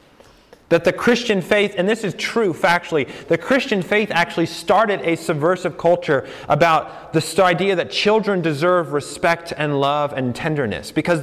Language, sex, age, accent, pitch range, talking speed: English, male, 30-49, American, 150-190 Hz, 155 wpm